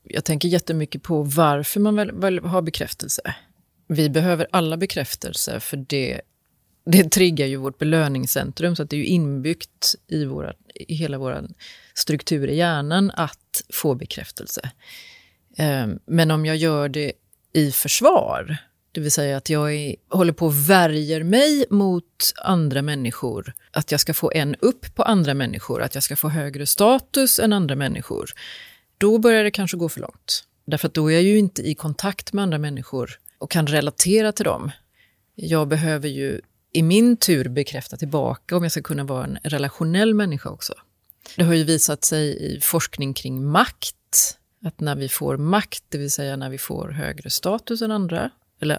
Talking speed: 175 wpm